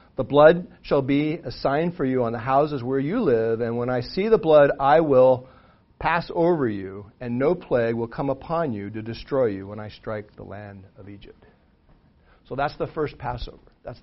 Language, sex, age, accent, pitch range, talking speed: English, male, 50-69, American, 120-165 Hz, 205 wpm